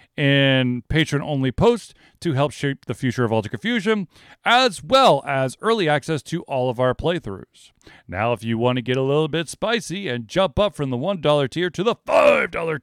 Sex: male